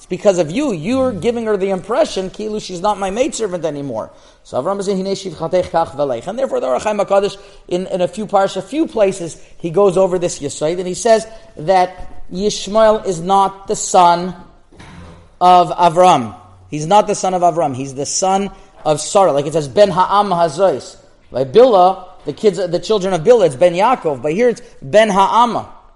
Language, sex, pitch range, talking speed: English, male, 175-220 Hz, 190 wpm